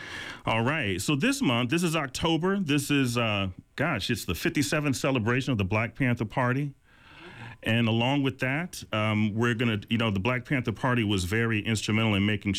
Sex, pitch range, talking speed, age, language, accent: male, 95-120 Hz, 190 wpm, 40-59, English, American